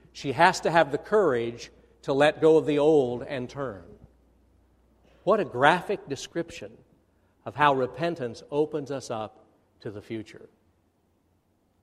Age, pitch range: 60-79, 80-135 Hz